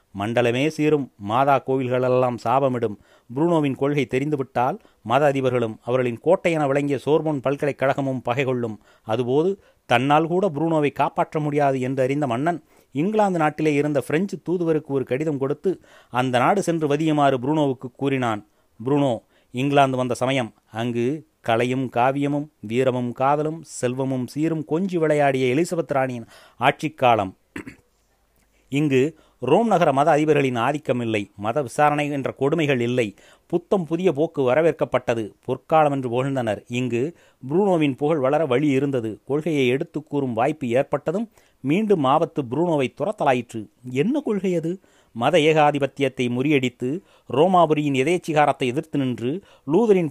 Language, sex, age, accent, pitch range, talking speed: Tamil, male, 30-49, native, 125-155 Hz, 115 wpm